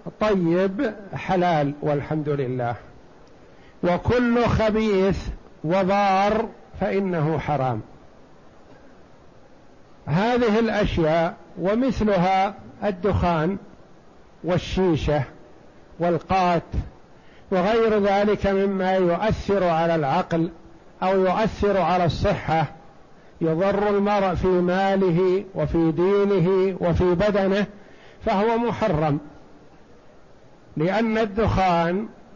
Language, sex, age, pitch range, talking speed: Arabic, male, 60-79, 170-215 Hz, 70 wpm